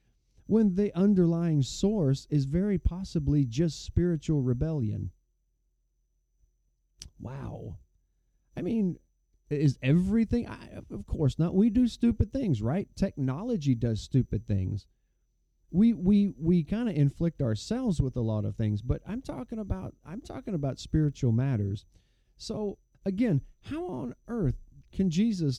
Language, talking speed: English, 130 wpm